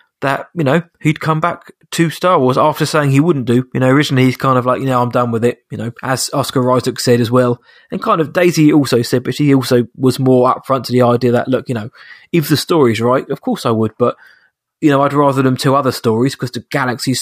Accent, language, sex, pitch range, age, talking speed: British, English, male, 125-150 Hz, 20-39, 260 wpm